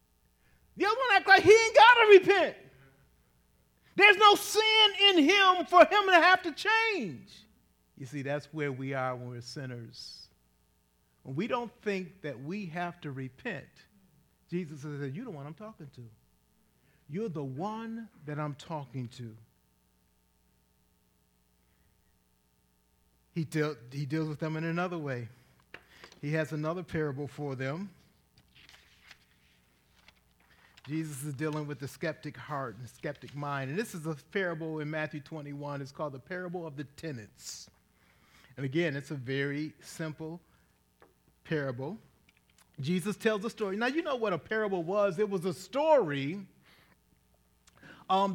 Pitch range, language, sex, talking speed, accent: 130-215 Hz, English, male, 145 wpm, American